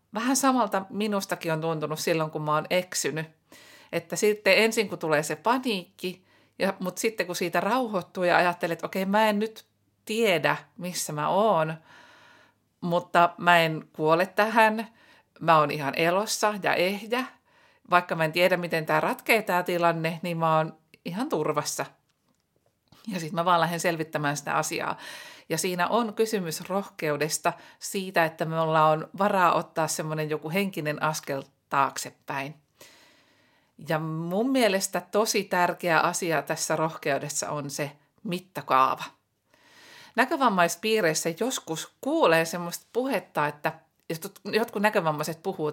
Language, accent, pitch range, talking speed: Finnish, native, 160-200 Hz, 135 wpm